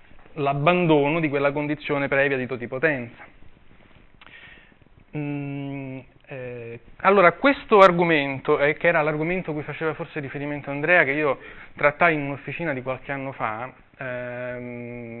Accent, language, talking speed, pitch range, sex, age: native, Italian, 125 wpm, 125-155 Hz, male, 20-39